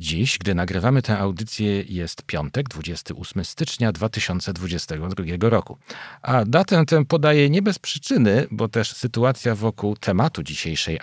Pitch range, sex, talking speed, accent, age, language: 90-125 Hz, male, 130 wpm, native, 40-59, Polish